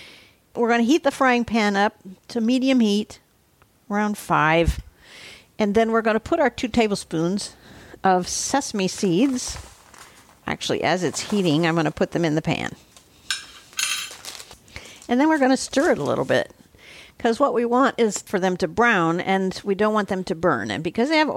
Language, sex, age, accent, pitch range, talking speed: English, female, 50-69, American, 185-235 Hz, 190 wpm